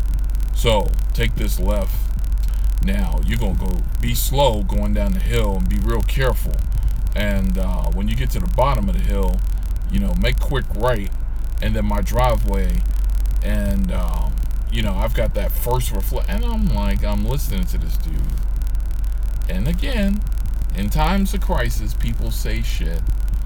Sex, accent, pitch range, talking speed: male, American, 80-105 Hz, 165 wpm